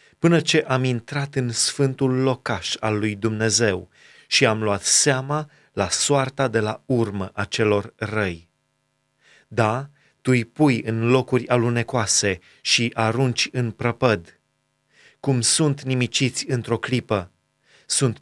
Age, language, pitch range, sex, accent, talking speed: 30-49, Romanian, 110-135 Hz, male, native, 130 wpm